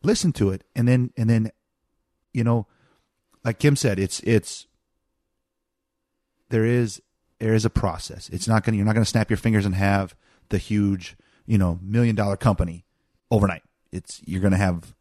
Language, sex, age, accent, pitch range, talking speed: English, male, 30-49, American, 95-115 Hz, 170 wpm